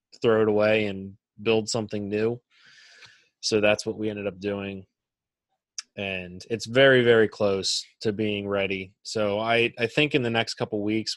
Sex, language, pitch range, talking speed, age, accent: male, English, 100-115 Hz, 165 wpm, 20-39, American